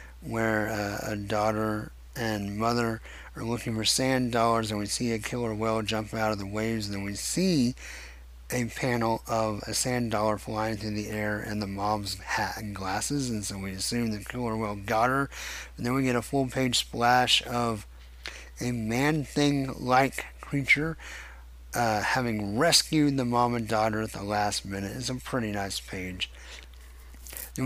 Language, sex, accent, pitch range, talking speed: English, male, American, 100-125 Hz, 175 wpm